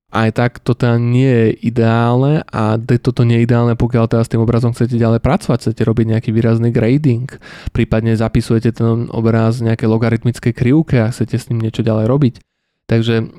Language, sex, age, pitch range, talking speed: Slovak, male, 20-39, 110-120 Hz, 180 wpm